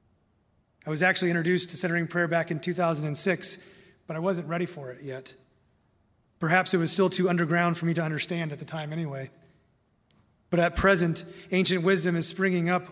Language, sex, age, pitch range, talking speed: English, male, 30-49, 155-185 Hz, 180 wpm